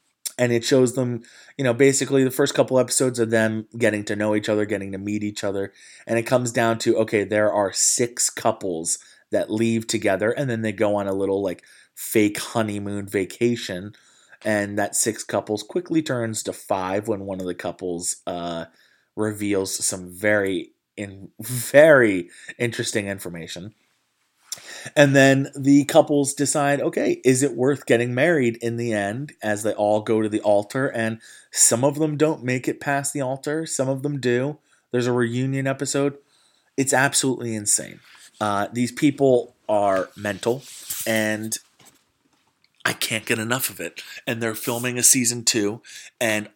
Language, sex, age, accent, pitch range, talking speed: English, male, 20-39, American, 105-130 Hz, 165 wpm